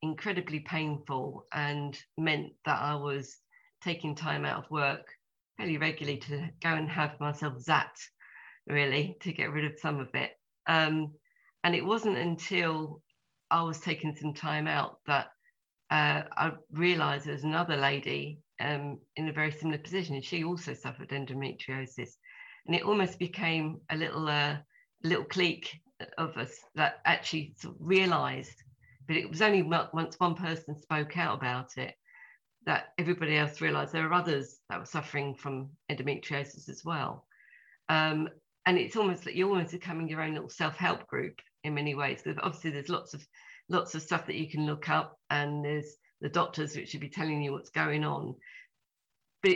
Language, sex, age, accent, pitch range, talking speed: English, female, 40-59, British, 145-175 Hz, 170 wpm